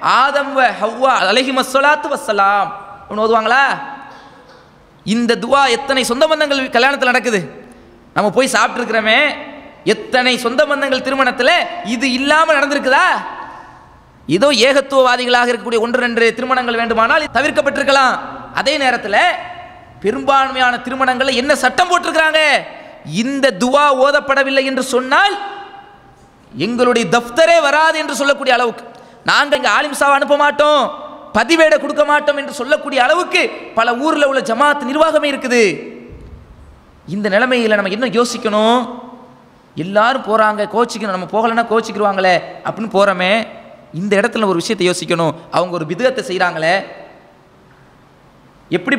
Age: 20-39